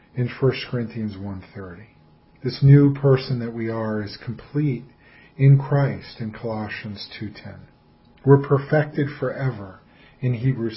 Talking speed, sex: 125 wpm, male